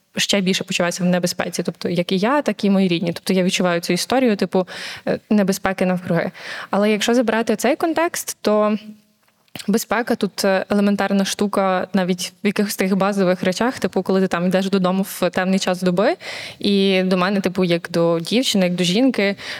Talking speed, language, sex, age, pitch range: 175 wpm, Ukrainian, female, 20-39, 185-220 Hz